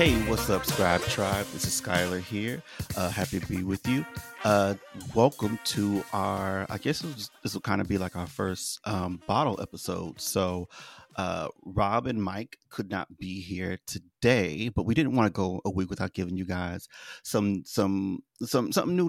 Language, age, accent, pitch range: English, 30-49, American, 95-110 Hz